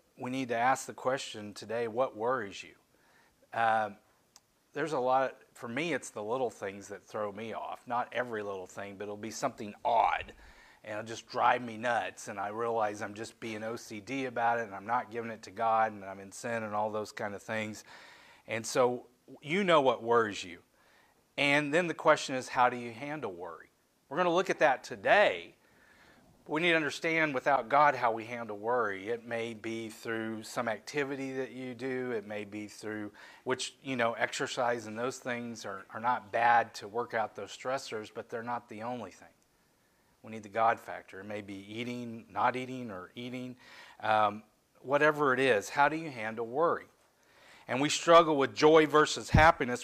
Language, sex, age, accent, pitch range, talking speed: English, male, 40-59, American, 110-135 Hz, 195 wpm